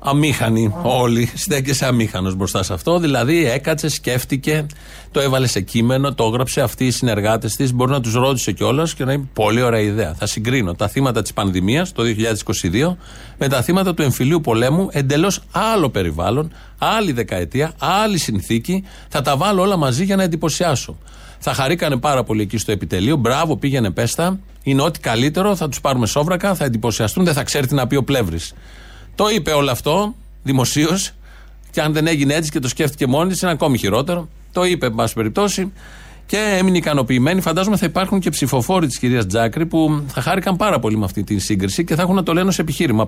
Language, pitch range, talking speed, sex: Greek, 110-165 Hz, 190 wpm, male